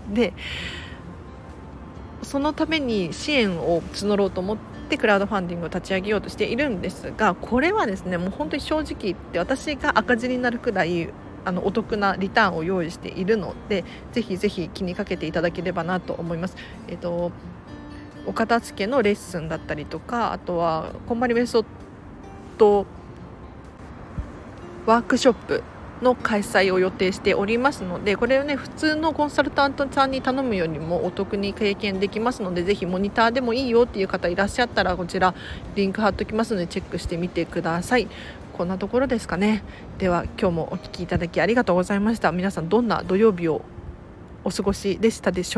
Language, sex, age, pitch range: Japanese, female, 40-59, 175-230 Hz